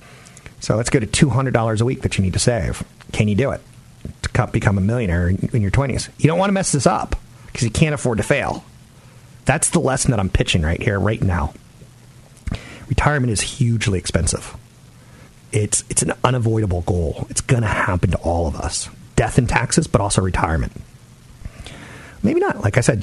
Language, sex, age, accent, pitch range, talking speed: English, male, 40-59, American, 100-125 Hz, 200 wpm